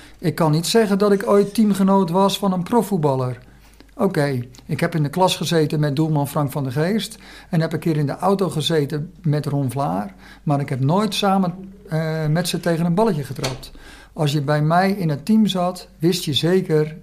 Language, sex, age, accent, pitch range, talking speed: Dutch, male, 50-69, Dutch, 145-185 Hz, 210 wpm